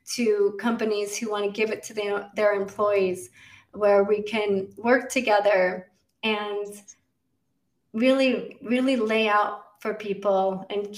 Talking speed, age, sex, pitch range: 120 wpm, 30-49, female, 200-215 Hz